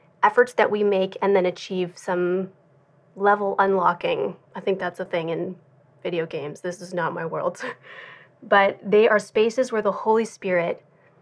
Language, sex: English, female